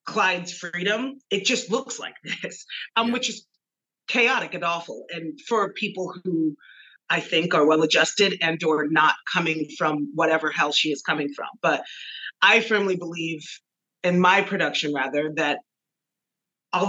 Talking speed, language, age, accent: 150 wpm, English, 30-49, American